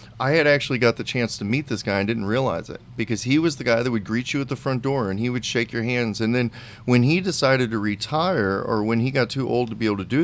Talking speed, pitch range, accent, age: 300 wpm, 110-130 Hz, American, 40-59